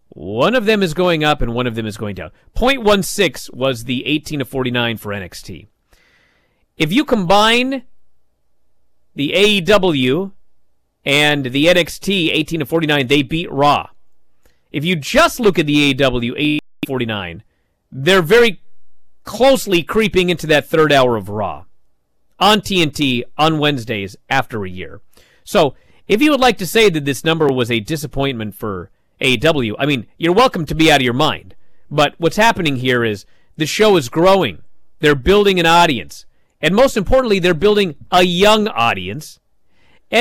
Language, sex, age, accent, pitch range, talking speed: English, male, 40-59, American, 130-215 Hz, 160 wpm